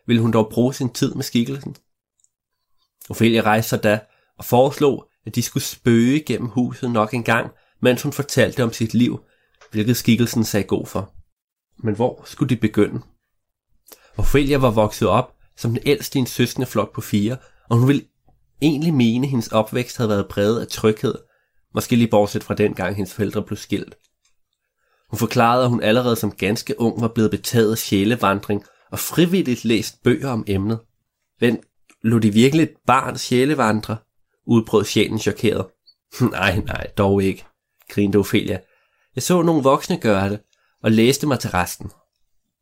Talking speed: 170 wpm